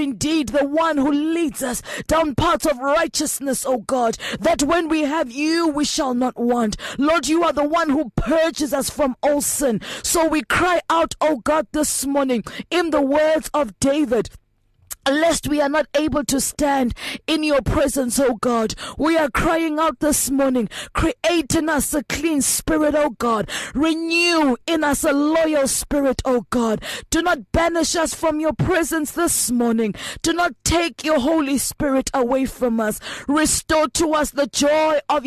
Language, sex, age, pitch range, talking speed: English, female, 20-39, 260-315 Hz, 175 wpm